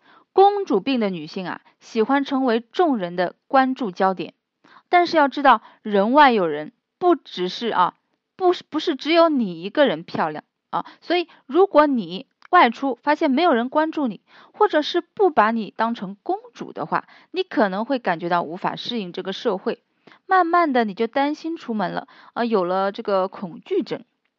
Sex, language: female, Chinese